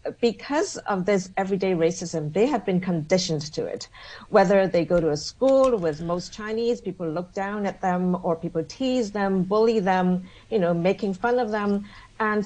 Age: 50-69